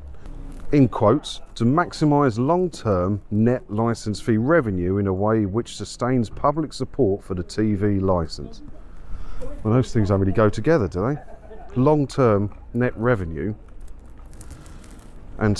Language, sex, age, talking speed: English, male, 40-59, 125 wpm